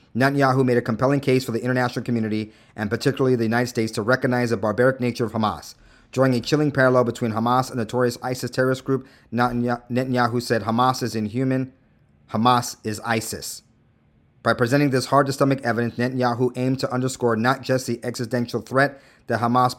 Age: 40-59